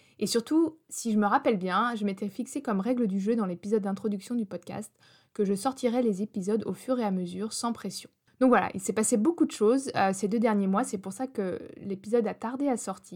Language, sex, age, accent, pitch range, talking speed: French, female, 20-39, French, 195-245 Hz, 235 wpm